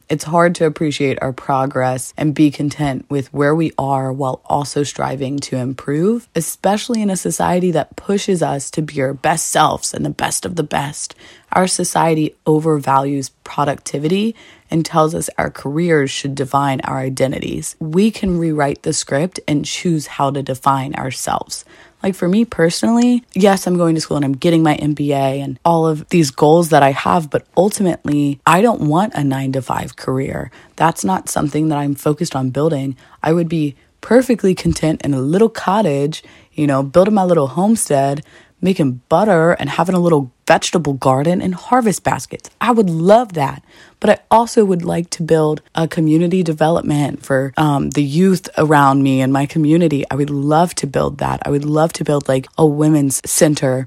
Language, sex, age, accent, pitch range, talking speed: English, female, 20-39, American, 140-175 Hz, 185 wpm